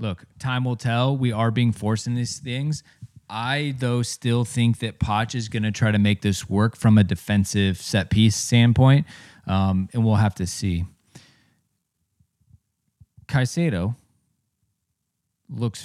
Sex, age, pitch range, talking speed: male, 20-39, 100-130 Hz, 145 wpm